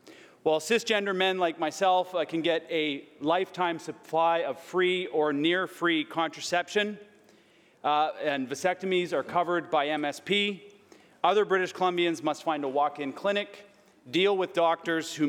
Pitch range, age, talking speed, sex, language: 150-185 Hz, 40-59, 135 wpm, male, English